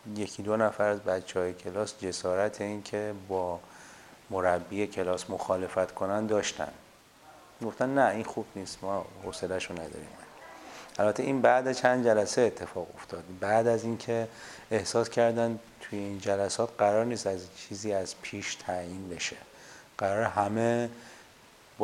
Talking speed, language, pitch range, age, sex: 135 wpm, Persian, 95-120 Hz, 30-49, male